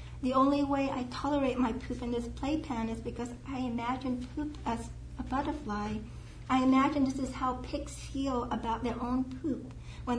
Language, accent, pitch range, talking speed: English, American, 235-265 Hz, 175 wpm